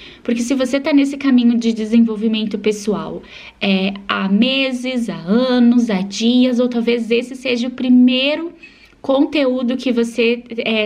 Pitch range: 210-245 Hz